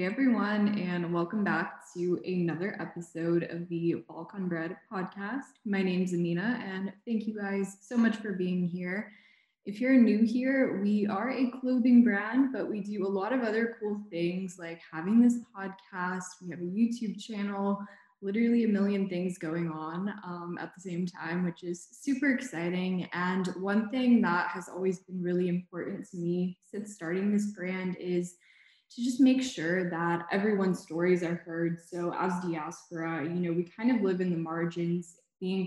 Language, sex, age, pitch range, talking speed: English, female, 20-39, 175-210 Hz, 175 wpm